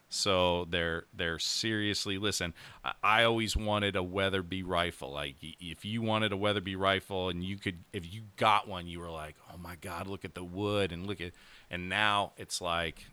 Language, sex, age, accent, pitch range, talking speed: English, male, 40-59, American, 85-95 Hz, 190 wpm